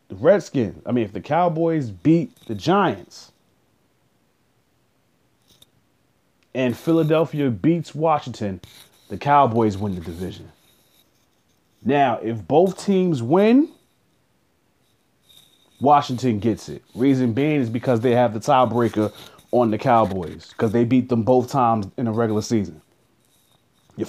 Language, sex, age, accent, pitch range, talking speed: English, male, 30-49, American, 110-150 Hz, 120 wpm